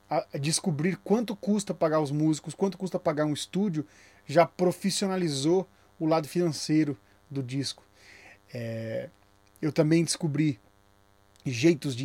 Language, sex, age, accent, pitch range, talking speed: Portuguese, male, 20-39, Brazilian, 115-170 Hz, 125 wpm